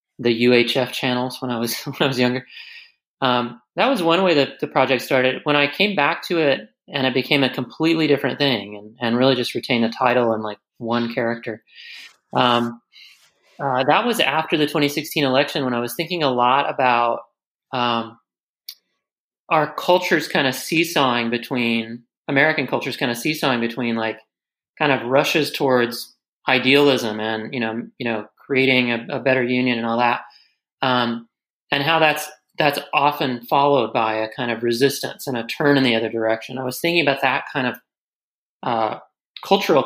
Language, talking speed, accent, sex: English, 180 wpm, American, male